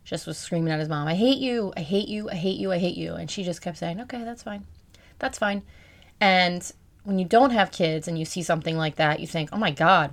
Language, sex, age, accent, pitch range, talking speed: English, female, 30-49, American, 155-185 Hz, 265 wpm